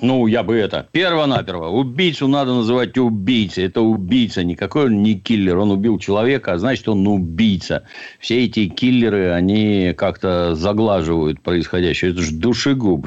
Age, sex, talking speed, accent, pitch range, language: 60-79, male, 145 wpm, native, 85-110 Hz, Russian